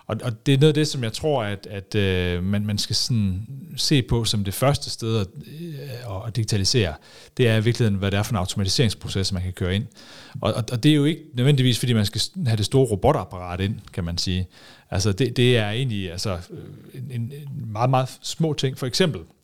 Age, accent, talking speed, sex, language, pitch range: 40-59, native, 215 wpm, male, Danish, 95-130 Hz